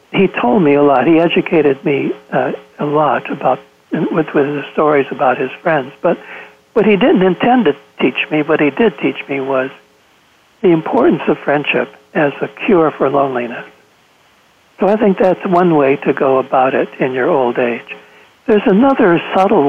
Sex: male